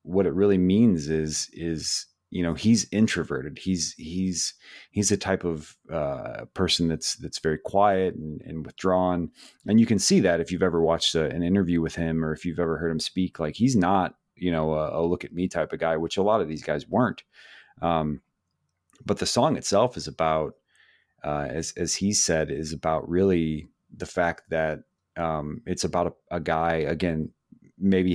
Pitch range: 80-90 Hz